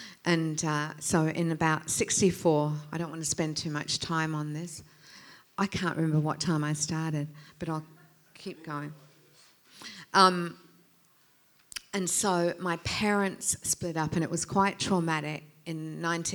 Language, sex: English, female